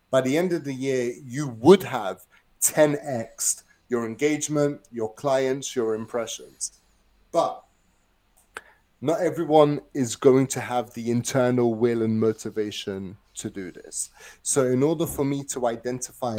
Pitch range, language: 120-145 Hz, English